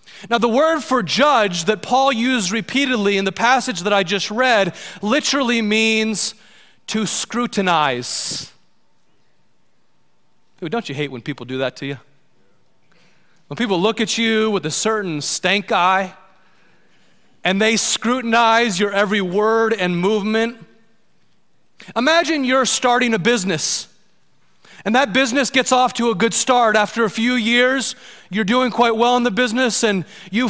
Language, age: English, 30-49